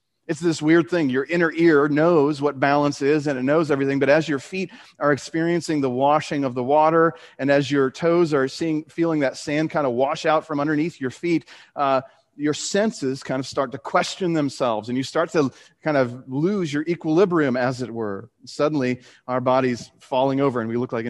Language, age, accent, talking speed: English, 40-59, American, 210 wpm